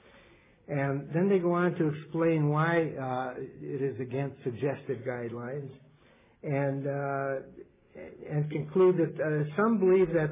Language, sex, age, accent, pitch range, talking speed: English, male, 60-79, American, 135-155 Hz, 135 wpm